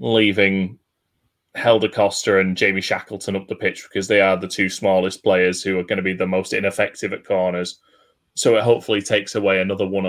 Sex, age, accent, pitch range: male, 20-39, British, 95-110 Hz